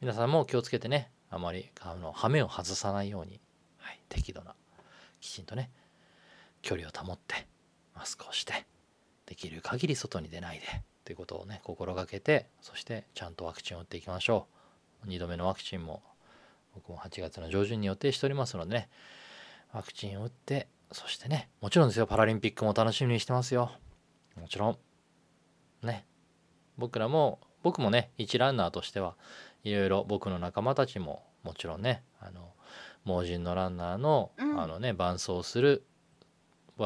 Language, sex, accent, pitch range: Japanese, male, native, 90-125 Hz